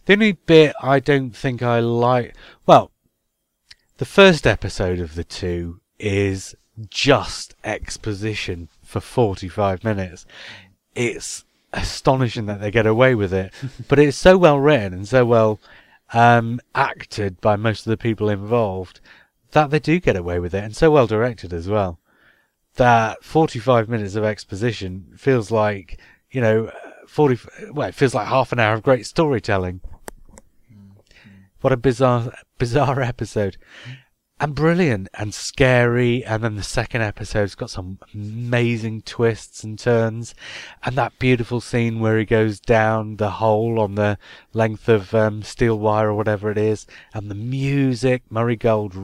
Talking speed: 150 wpm